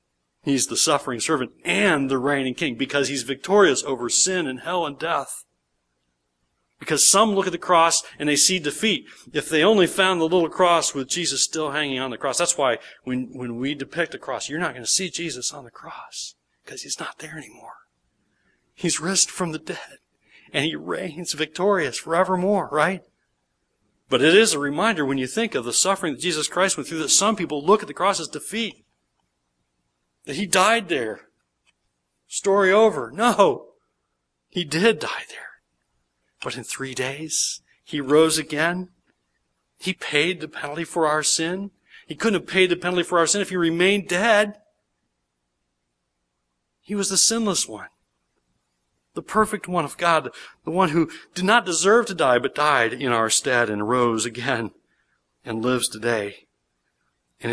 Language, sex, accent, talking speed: English, male, American, 175 wpm